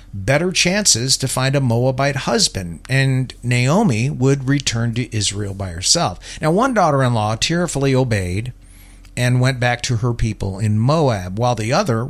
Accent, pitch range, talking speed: American, 100-135 Hz, 155 wpm